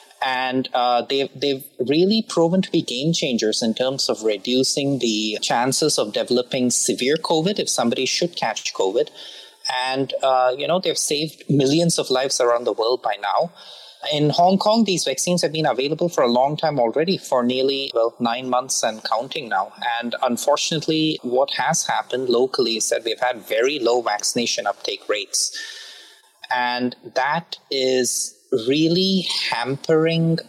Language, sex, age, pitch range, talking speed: English, male, 30-49, 125-175 Hz, 155 wpm